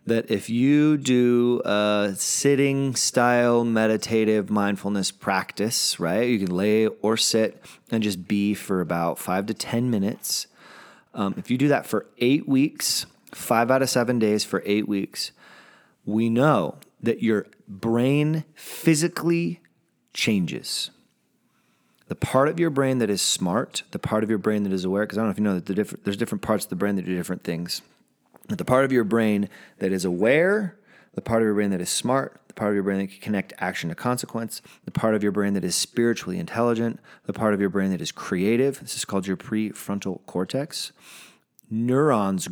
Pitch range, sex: 100-130 Hz, male